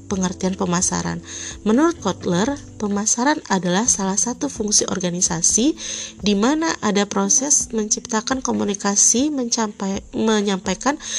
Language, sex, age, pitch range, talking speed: Indonesian, female, 30-49, 180-225 Hz, 90 wpm